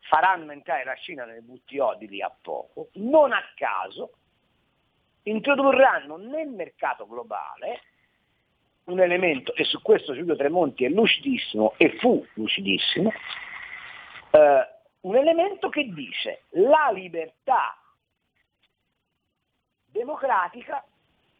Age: 50-69